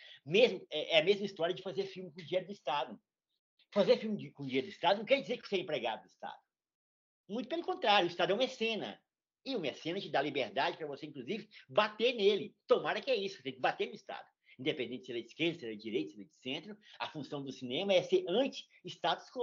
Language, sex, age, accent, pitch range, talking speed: Portuguese, male, 50-69, Brazilian, 175-245 Hz, 240 wpm